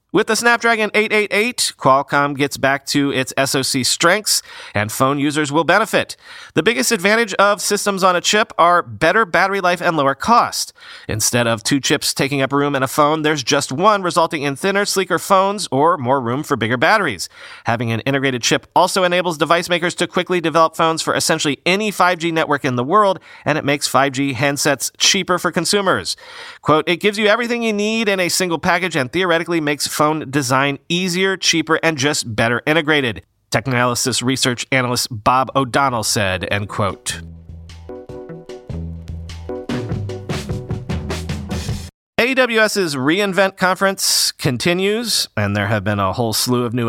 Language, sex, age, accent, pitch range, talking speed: English, male, 40-59, American, 125-185 Hz, 160 wpm